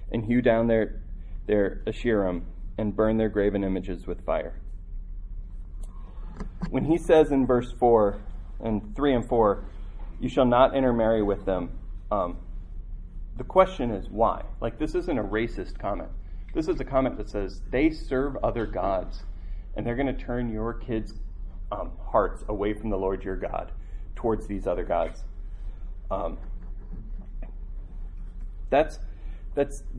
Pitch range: 85-115 Hz